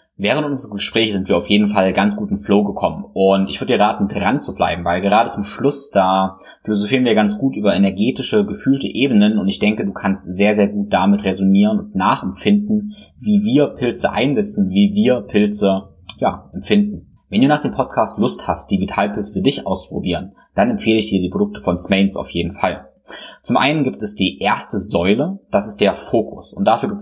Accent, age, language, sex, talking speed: German, 20-39, German, male, 205 wpm